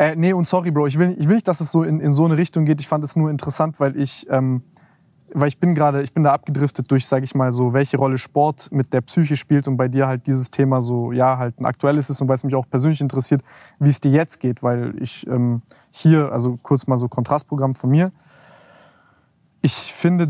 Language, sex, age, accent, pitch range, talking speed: German, male, 20-39, German, 135-165 Hz, 250 wpm